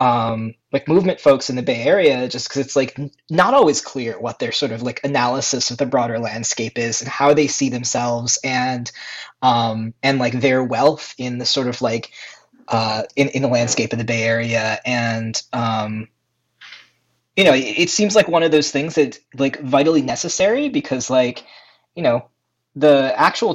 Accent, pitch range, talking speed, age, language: American, 120-145 Hz, 190 wpm, 20-39, English